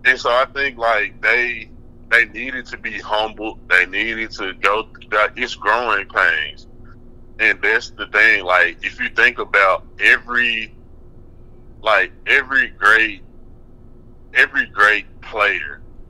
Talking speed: 125 wpm